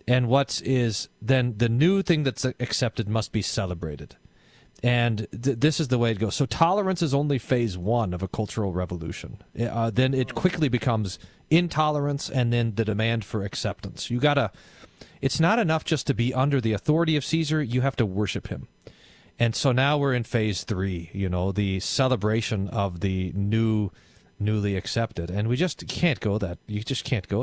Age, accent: 40-59, American